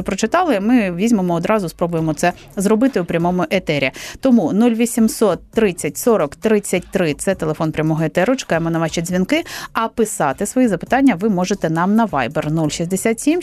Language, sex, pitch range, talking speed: Ukrainian, female, 175-235 Hz, 145 wpm